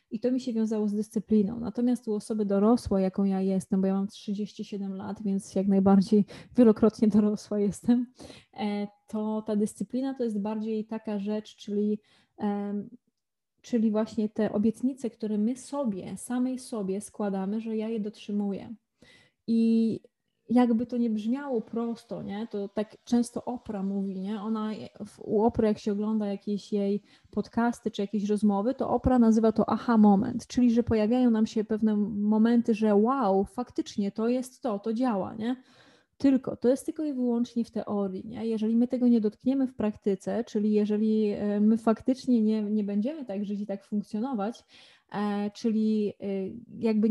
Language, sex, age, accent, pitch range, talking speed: Polish, female, 20-39, native, 205-230 Hz, 160 wpm